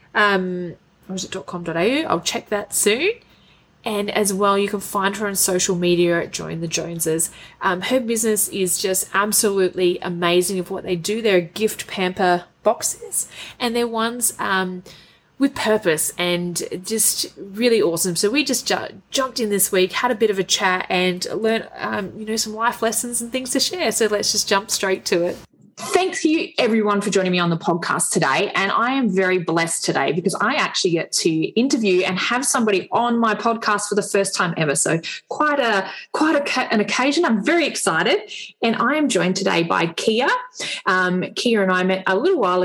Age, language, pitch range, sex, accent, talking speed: 20-39, English, 185-235 Hz, female, Australian, 195 wpm